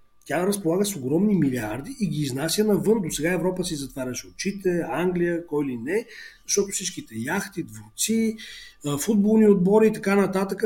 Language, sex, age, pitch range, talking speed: English, male, 40-59, 145-205 Hz, 160 wpm